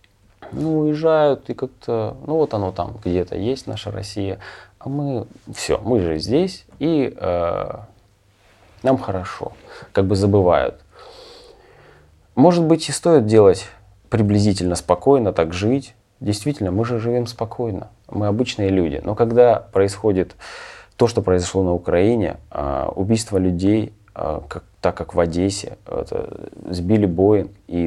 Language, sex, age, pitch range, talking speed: Russian, male, 20-39, 90-120 Hz, 135 wpm